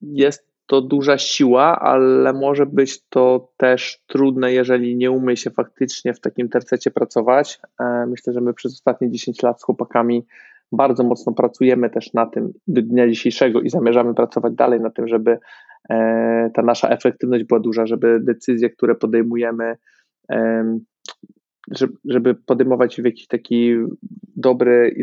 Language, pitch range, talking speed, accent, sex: Polish, 120-130 Hz, 145 wpm, native, male